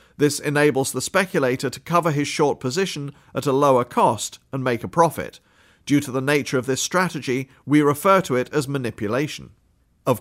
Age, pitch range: 40-59, 130-155 Hz